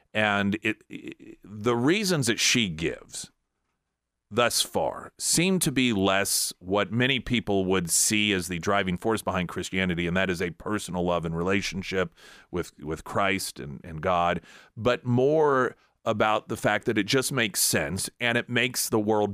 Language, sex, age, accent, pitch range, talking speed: English, male, 40-59, American, 95-125 Hz, 170 wpm